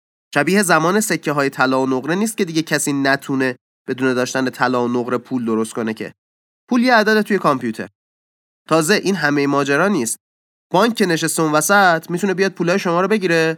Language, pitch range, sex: Persian, 125-180 Hz, male